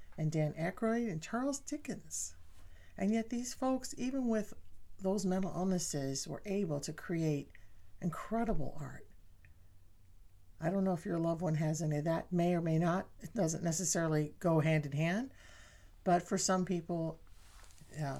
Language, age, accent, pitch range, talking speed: English, 50-69, American, 145-185 Hz, 160 wpm